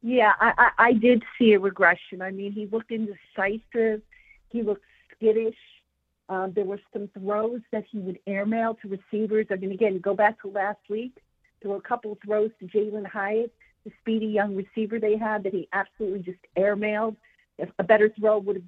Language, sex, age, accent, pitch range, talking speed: English, female, 50-69, American, 200-225 Hz, 190 wpm